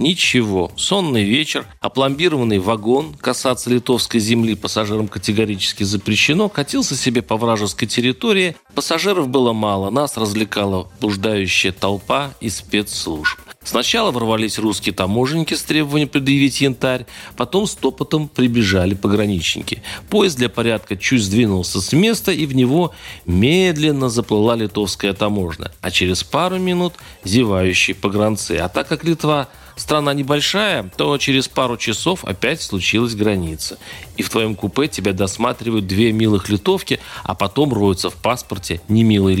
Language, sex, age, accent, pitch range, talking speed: Russian, male, 40-59, native, 105-150 Hz, 130 wpm